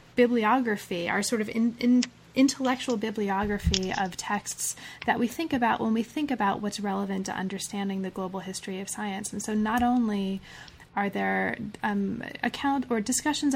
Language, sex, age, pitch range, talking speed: English, female, 30-49, 200-240 Hz, 165 wpm